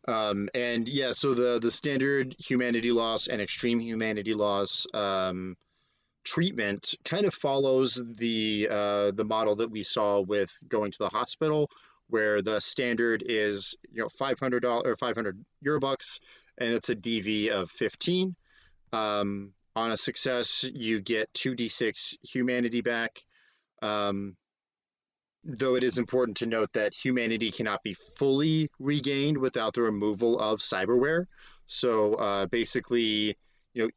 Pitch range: 100-125 Hz